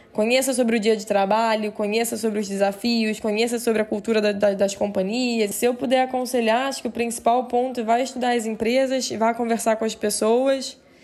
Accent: Brazilian